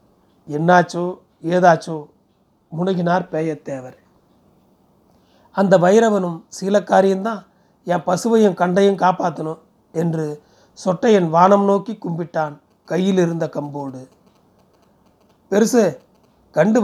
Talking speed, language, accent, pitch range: 75 wpm, Tamil, native, 165-205 Hz